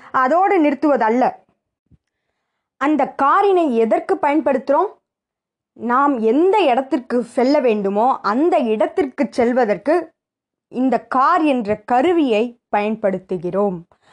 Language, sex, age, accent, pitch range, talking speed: Tamil, female, 20-39, native, 215-290 Hz, 80 wpm